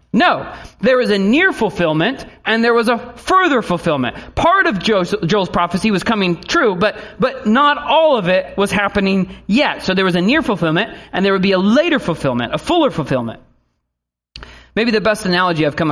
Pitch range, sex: 140-200 Hz, male